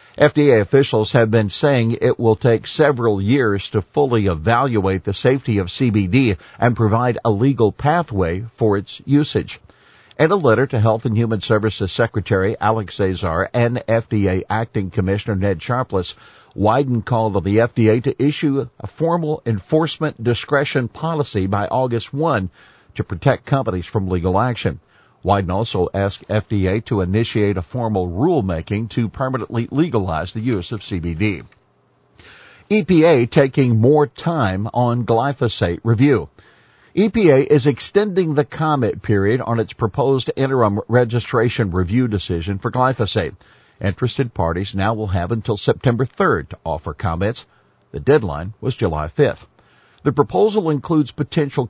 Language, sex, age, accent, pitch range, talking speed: English, male, 50-69, American, 100-135 Hz, 140 wpm